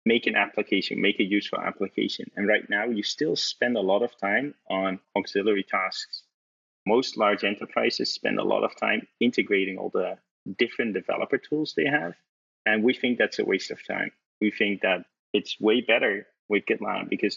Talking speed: 185 wpm